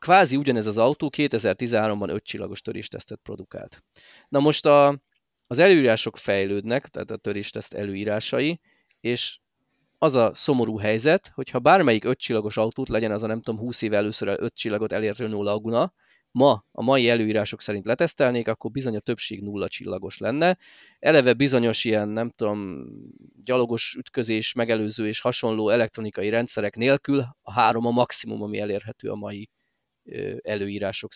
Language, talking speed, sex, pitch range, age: Hungarian, 150 wpm, male, 105-130 Hz, 20-39